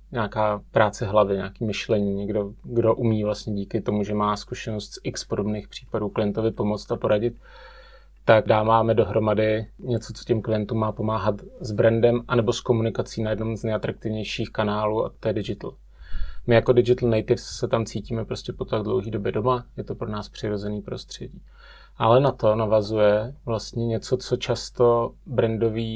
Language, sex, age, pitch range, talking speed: Czech, male, 30-49, 110-120 Hz, 170 wpm